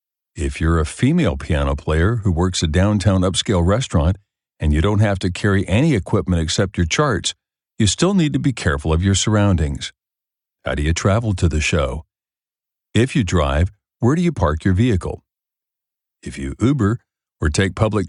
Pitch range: 90-115 Hz